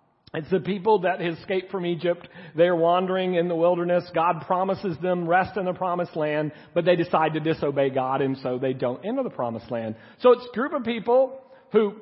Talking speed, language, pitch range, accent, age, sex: 205 wpm, English, 145-205 Hz, American, 40-59, male